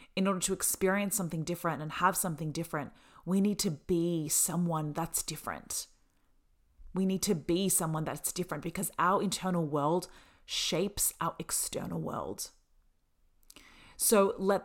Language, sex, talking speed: English, female, 140 wpm